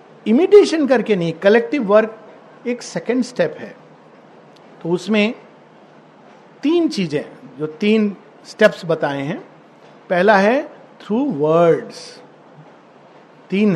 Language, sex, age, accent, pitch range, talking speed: Hindi, male, 50-69, native, 175-245 Hz, 100 wpm